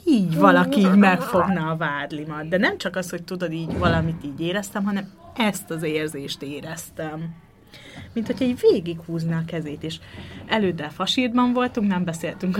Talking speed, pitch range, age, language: 155 wpm, 170-210 Hz, 30-49, Hungarian